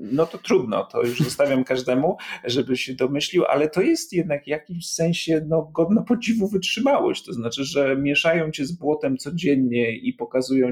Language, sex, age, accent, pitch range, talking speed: Polish, male, 40-59, native, 120-160 Hz, 170 wpm